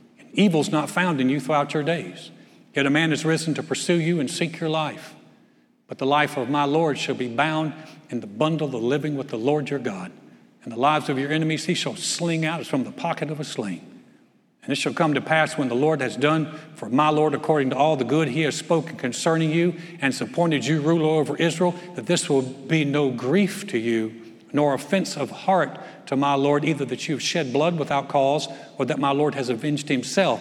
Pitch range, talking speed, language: 135-165 Hz, 230 wpm, English